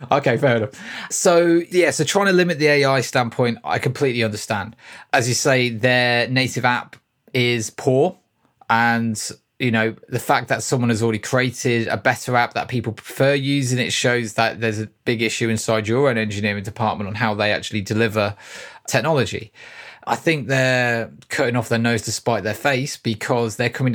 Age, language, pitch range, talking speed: 20-39, English, 115-135 Hz, 180 wpm